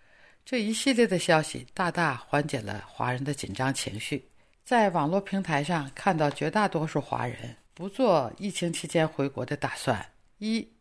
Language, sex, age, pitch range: Chinese, female, 50-69, 140-190 Hz